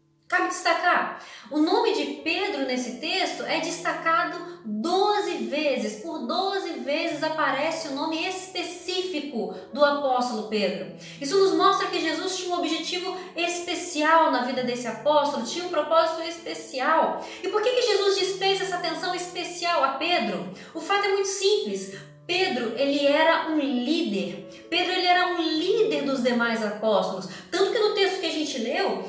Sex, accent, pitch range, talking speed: female, Brazilian, 270-360 Hz, 155 wpm